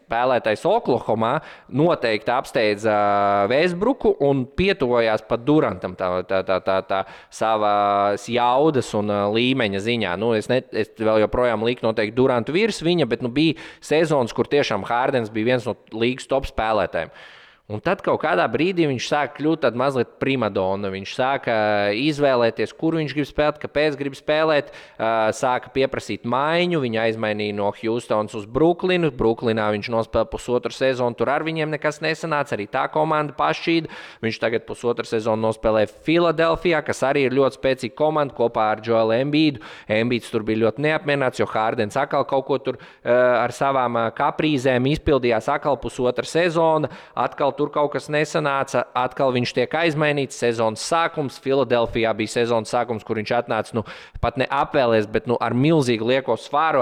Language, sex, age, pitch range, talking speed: English, male, 20-39, 110-145 Hz, 150 wpm